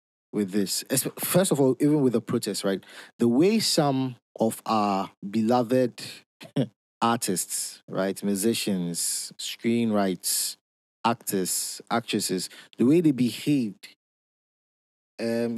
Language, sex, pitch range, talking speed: English, male, 100-130 Hz, 105 wpm